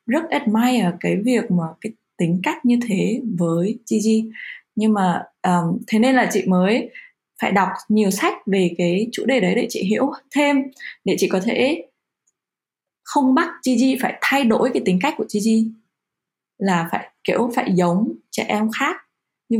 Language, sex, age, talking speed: Vietnamese, female, 20-39, 175 wpm